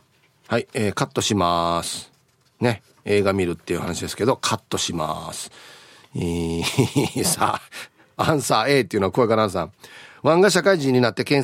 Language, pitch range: Japanese, 120-160 Hz